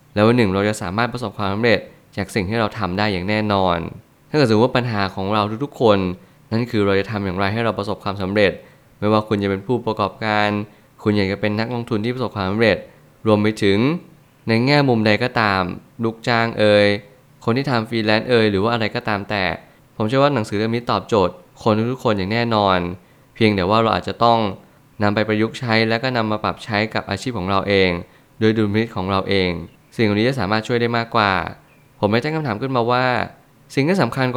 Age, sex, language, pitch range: 20-39, male, Thai, 100-120 Hz